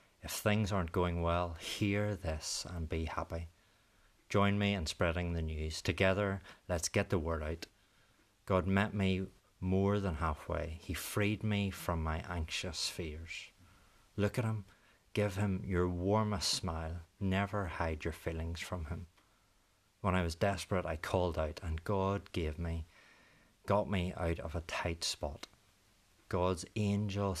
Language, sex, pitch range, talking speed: English, male, 80-100 Hz, 150 wpm